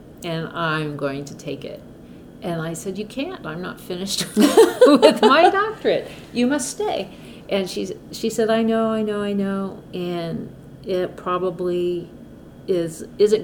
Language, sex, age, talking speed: English, female, 50-69, 150 wpm